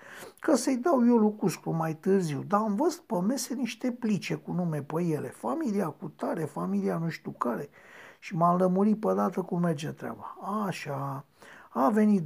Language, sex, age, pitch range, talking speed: Romanian, male, 60-79, 165-230 Hz, 175 wpm